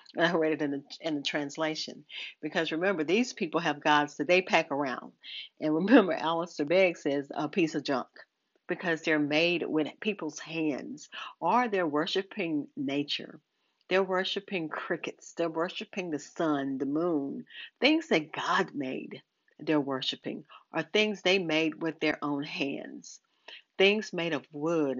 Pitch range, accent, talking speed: 150-195 Hz, American, 155 wpm